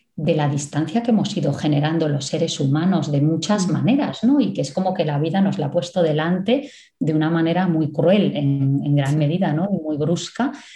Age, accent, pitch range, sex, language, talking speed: 20-39, Spanish, 145-195 Hz, female, Spanish, 205 wpm